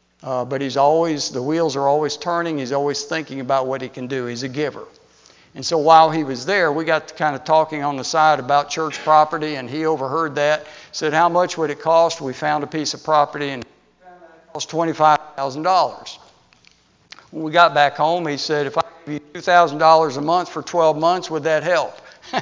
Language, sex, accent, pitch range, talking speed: English, male, American, 145-170 Hz, 205 wpm